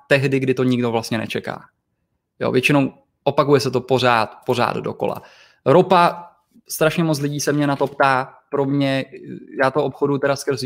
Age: 20-39